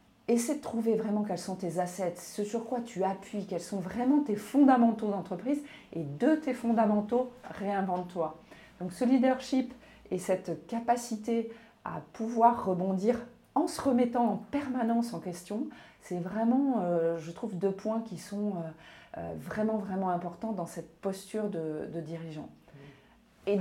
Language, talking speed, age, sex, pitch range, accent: French, 155 wpm, 40-59, female, 170-235 Hz, French